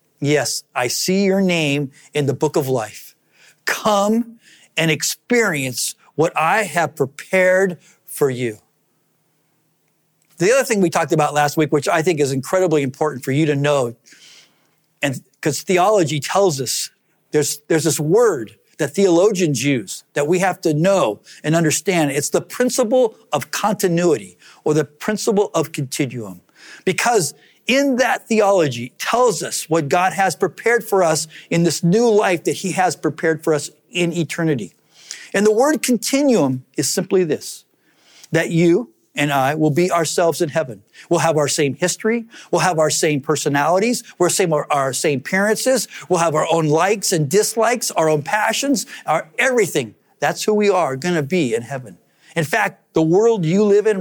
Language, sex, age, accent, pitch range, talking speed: English, male, 50-69, American, 150-200 Hz, 165 wpm